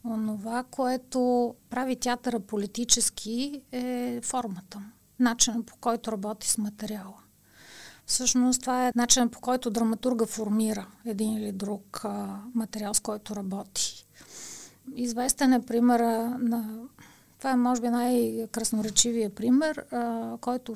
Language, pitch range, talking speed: Bulgarian, 215-245 Hz, 115 wpm